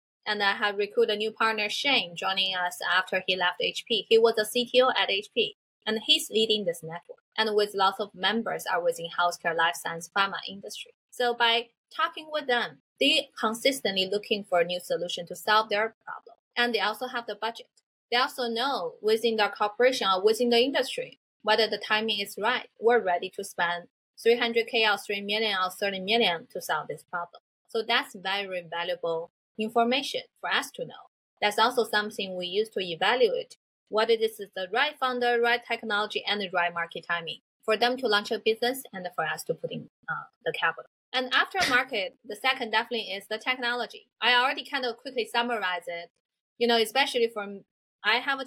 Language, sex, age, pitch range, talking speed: English, female, 20-39, 195-245 Hz, 195 wpm